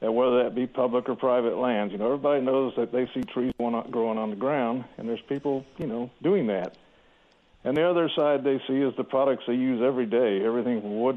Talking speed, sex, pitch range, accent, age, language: 230 wpm, male, 120-140 Hz, American, 50-69, English